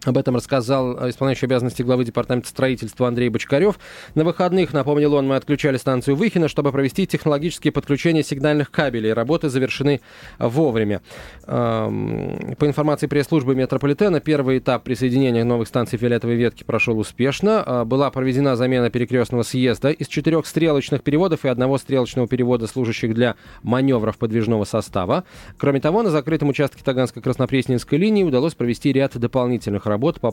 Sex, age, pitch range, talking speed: male, 20-39, 115-145 Hz, 140 wpm